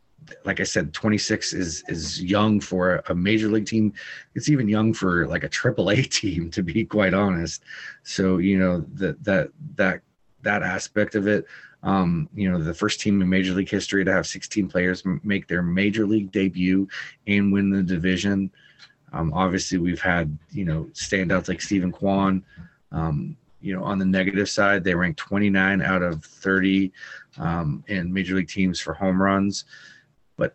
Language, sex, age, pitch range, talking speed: English, male, 30-49, 90-105 Hz, 180 wpm